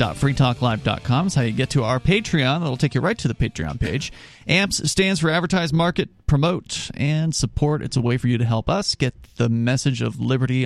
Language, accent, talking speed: English, American, 210 wpm